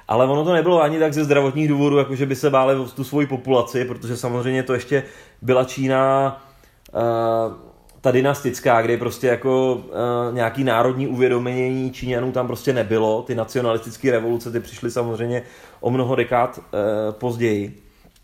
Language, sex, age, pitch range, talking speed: Czech, male, 30-49, 125-145 Hz, 145 wpm